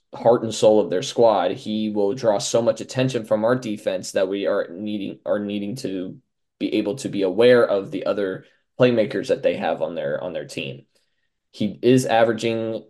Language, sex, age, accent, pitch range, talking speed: English, male, 20-39, American, 105-125 Hz, 195 wpm